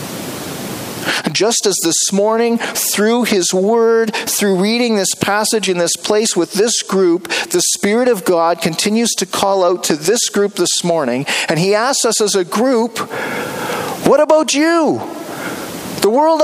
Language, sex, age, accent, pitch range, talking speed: English, male, 40-59, American, 175-245 Hz, 155 wpm